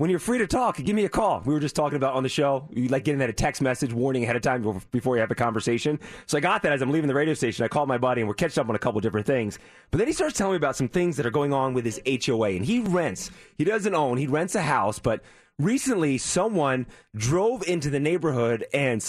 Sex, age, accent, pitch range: male, 30-49, American, 125-165 Hz